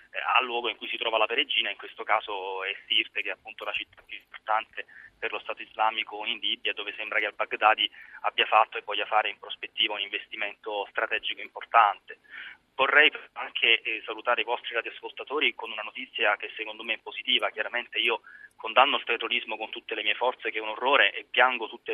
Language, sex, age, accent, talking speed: Italian, male, 20-39, native, 200 wpm